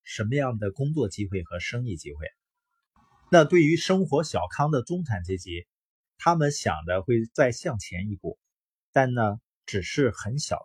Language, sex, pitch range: Chinese, male, 100-140 Hz